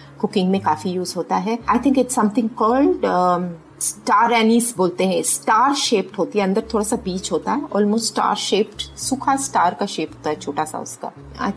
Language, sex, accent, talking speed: Hindi, female, native, 195 wpm